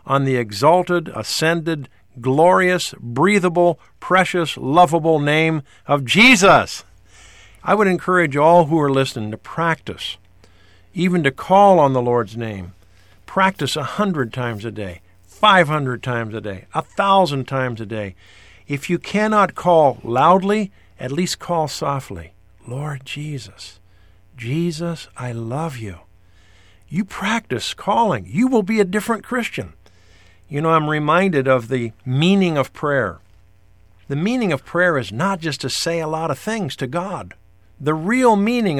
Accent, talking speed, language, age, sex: American, 145 wpm, English, 50-69, male